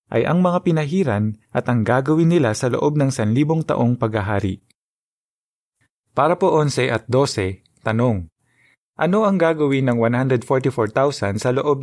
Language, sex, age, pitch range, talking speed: Filipino, male, 20-39, 115-150 Hz, 135 wpm